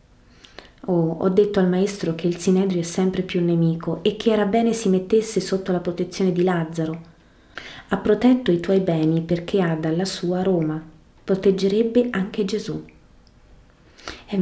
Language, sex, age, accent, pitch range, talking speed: Italian, female, 30-49, native, 165-200 Hz, 160 wpm